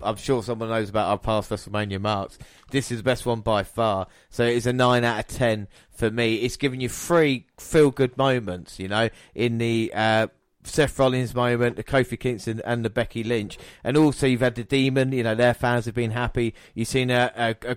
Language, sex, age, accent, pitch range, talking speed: English, male, 30-49, British, 110-130 Hz, 220 wpm